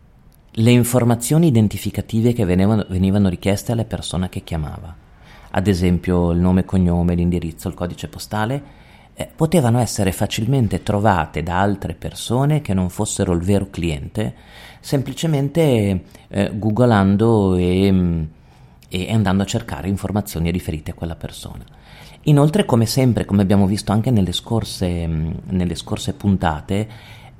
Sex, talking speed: male, 135 wpm